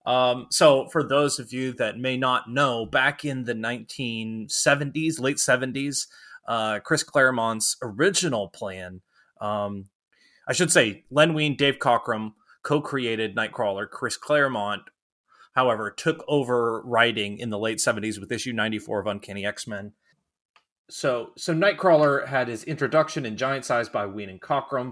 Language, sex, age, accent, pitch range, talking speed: English, male, 20-39, American, 105-130 Hz, 145 wpm